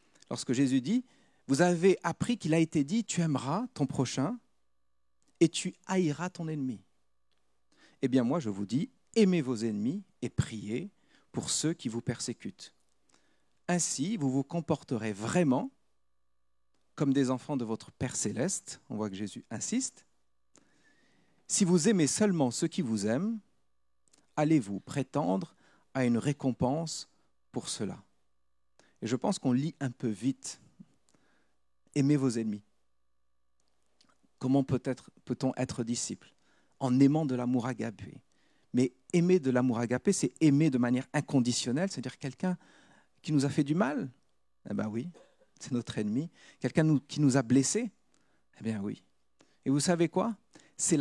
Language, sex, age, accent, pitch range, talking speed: French, male, 40-59, French, 110-160 Hz, 145 wpm